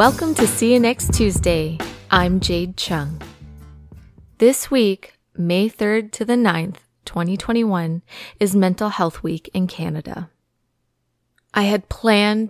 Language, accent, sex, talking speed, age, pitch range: English, American, female, 125 wpm, 20-39, 165-205 Hz